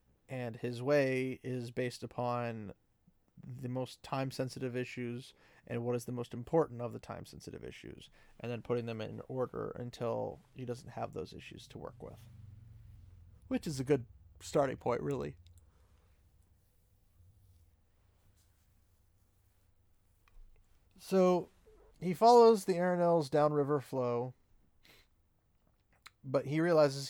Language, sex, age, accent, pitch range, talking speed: English, male, 30-49, American, 100-145 Hz, 115 wpm